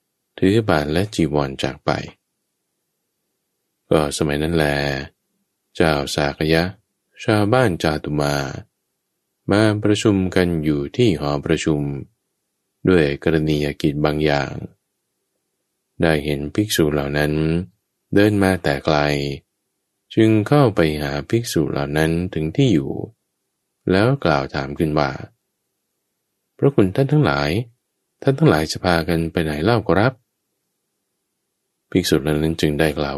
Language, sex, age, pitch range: English, male, 20-39, 75-110 Hz